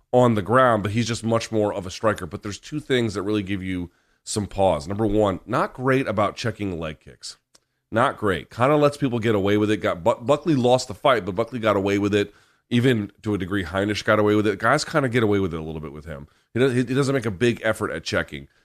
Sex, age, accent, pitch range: male, 30-49, American, 100-130 Hz